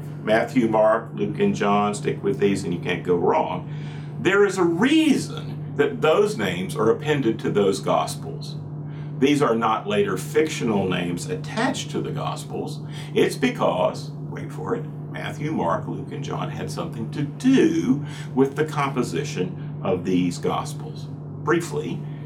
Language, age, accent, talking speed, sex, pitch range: English, 50-69, American, 150 wpm, male, 145-155 Hz